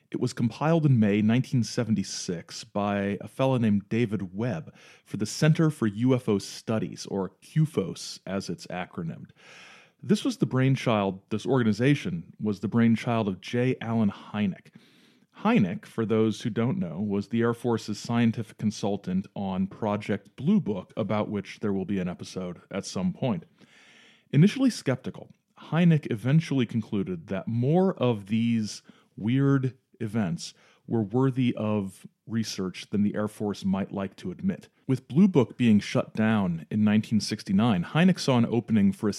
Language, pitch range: English, 105-155 Hz